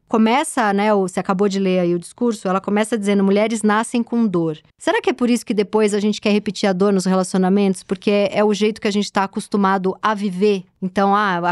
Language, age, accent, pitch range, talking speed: Portuguese, 20-39, Brazilian, 195-235 Hz, 230 wpm